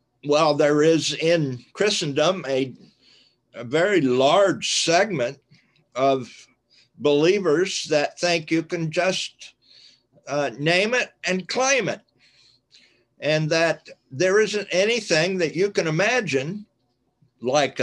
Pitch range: 125-180 Hz